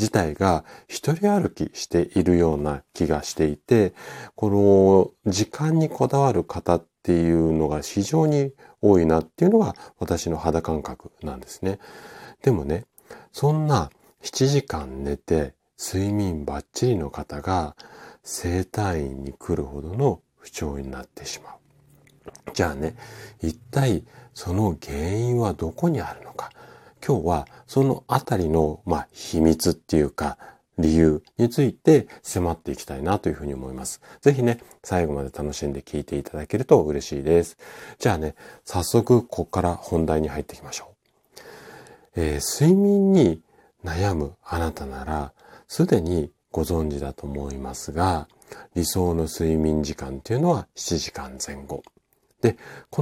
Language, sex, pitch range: Japanese, male, 75-115 Hz